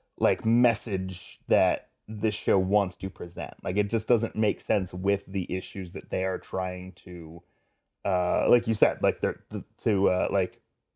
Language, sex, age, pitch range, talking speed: English, male, 30-49, 95-115 Hz, 175 wpm